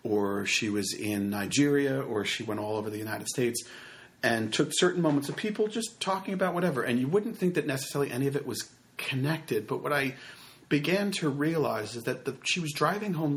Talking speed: 210 wpm